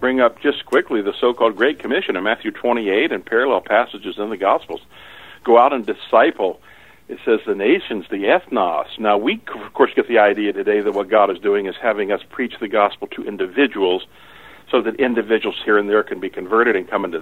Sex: male